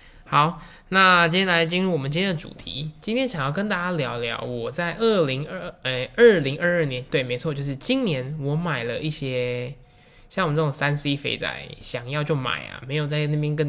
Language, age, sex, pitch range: Chinese, 10-29, male, 135-170 Hz